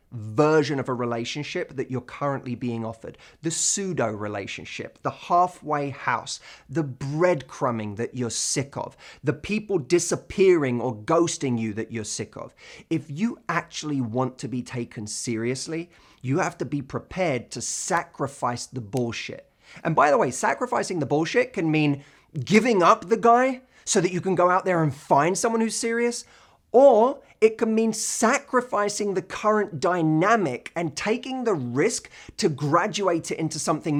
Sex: male